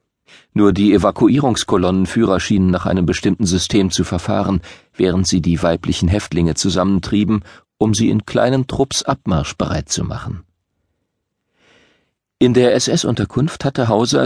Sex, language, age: male, German, 40-59